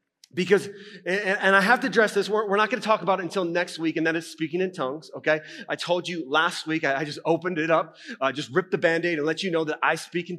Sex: male